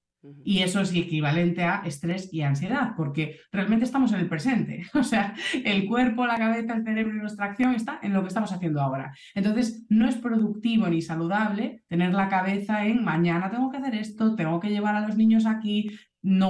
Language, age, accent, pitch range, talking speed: Spanish, 20-39, Spanish, 170-220 Hz, 205 wpm